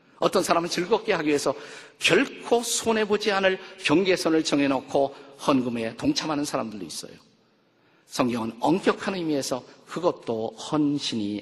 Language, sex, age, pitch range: Korean, male, 50-69, 140-185 Hz